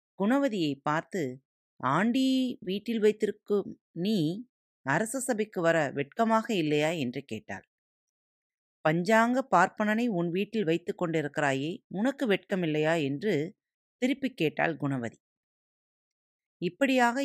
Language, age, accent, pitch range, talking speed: Tamil, 30-49, native, 150-220 Hz, 85 wpm